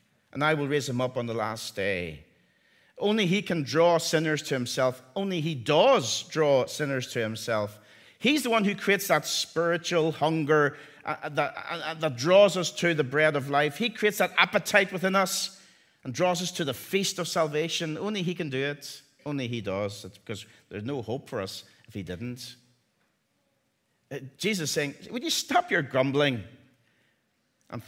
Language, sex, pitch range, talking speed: English, male, 130-180 Hz, 175 wpm